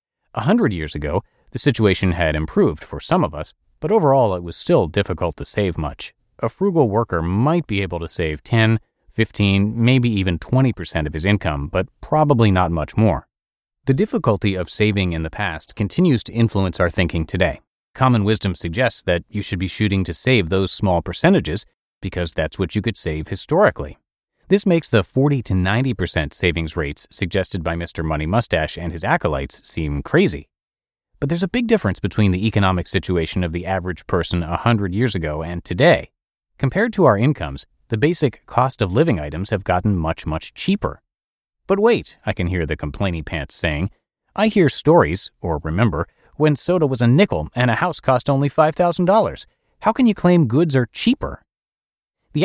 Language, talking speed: English, 180 wpm